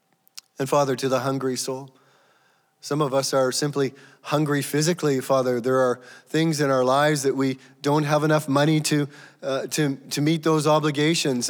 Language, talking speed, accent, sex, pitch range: English, 170 wpm, American, male, 130-150 Hz